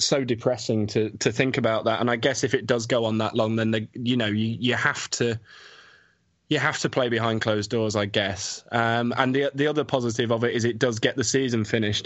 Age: 20-39